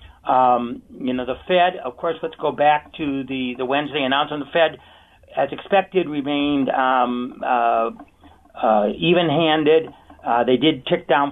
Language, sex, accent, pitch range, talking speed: English, male, American, 120-150 Hz, 155 wpm